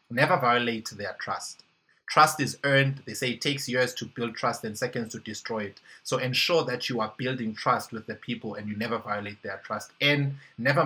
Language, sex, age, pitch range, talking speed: English, male, 20-39, 110-135 Hz, 210 wpm